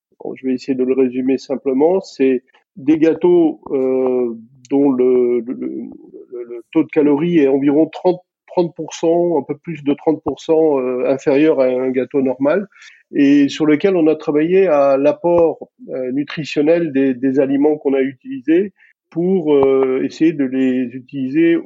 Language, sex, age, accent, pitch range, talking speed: French, male, 40-59, French, 135-175 Hz, 160 wpm